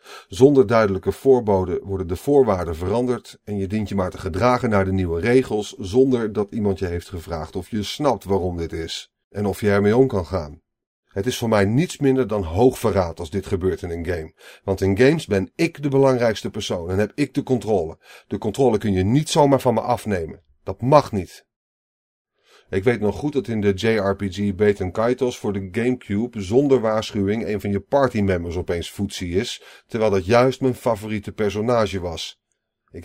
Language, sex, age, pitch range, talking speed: Dutch, male, 40-59, 95-130 Hz, 195 wpm